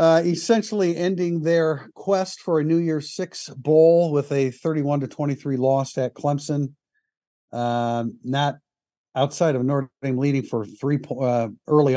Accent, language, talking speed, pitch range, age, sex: American, English, 150 wpm, 130-160 Hz, 50-69, male